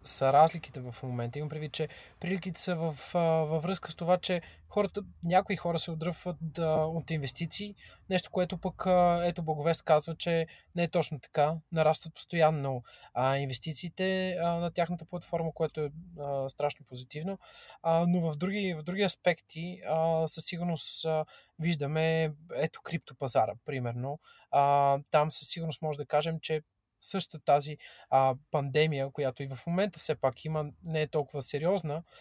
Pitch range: 145-175 Hz